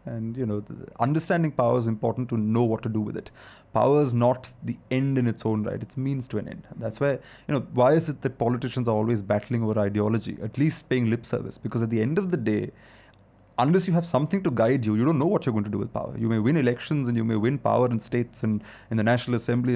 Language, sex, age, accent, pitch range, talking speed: English, male, 30-49, Indian, 110-130 Hz, 270 wpm